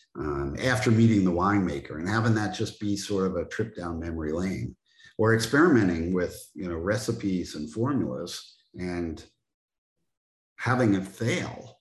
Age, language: 50-69, English